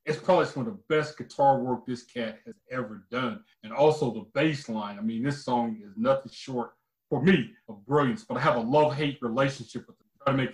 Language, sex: English, male